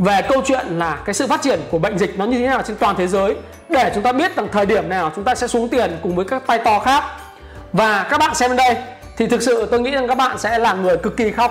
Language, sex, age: Vietnamese, male, 20-39